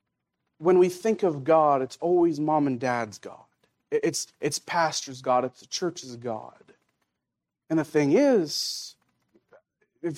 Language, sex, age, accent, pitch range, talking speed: English, male, 40-59, American, 150-215 Hz, 140 wpm